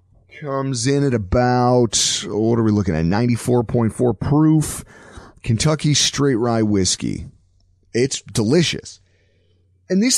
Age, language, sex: 30-49, English, male